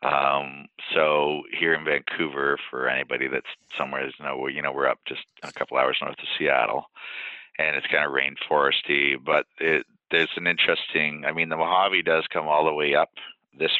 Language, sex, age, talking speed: English, male, 50-69, 185 wpm